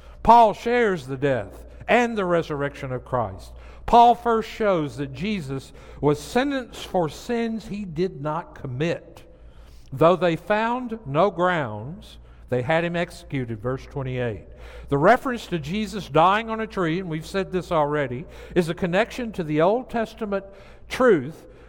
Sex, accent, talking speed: male, American, 150 wpm